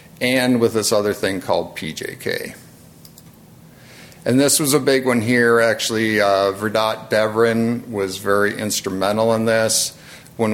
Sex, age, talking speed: male, 50-69, 135 wpm